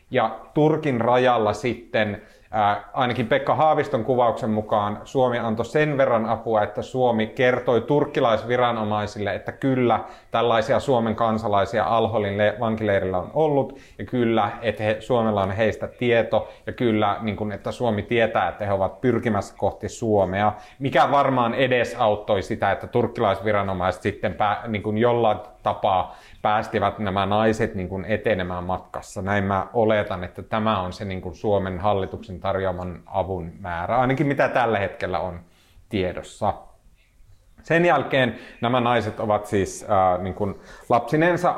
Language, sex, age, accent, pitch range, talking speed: Finnish, male, 30-49, native, 100-125 Hz, 130 wpm